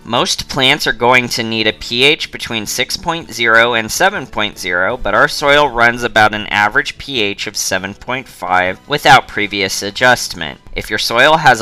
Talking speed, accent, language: 150 wpm, American, English